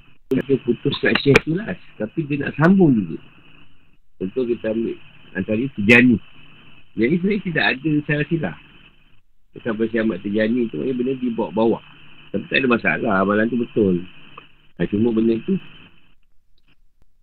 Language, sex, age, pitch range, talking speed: Malay, male, 50-69, 100-125 Hz, 130 wpm